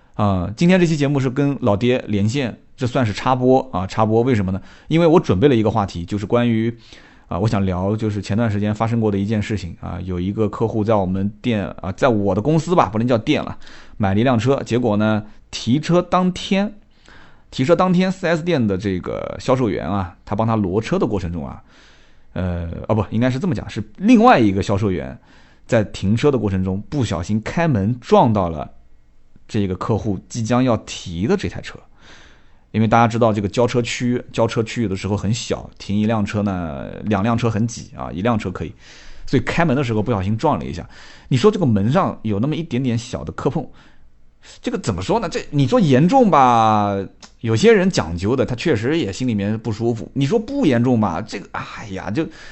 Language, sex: Chinese, male